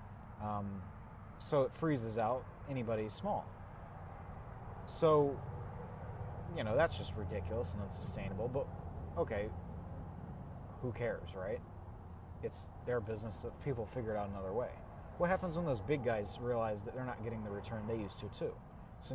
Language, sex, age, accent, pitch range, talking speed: English, male, 30-49, American, 95-120 Hz, 150 wpm